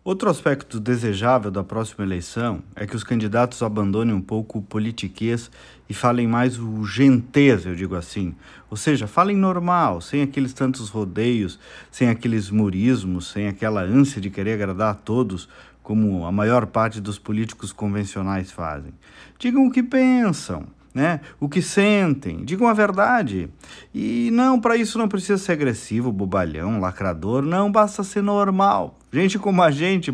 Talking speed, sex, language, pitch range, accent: 155 wpm, male, Portuguese, 110-180 Hz, Brazilian